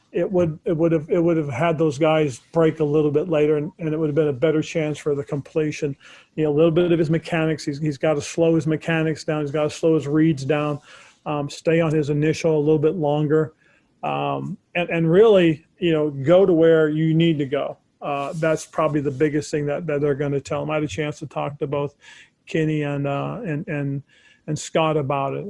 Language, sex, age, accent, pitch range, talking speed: English, male, 40-59, American, 145-160 Hz, 240 wpm